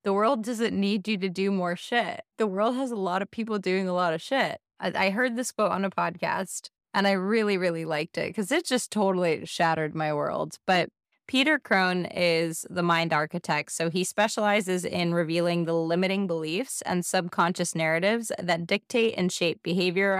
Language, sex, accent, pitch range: English, female, American, 175-215 Hz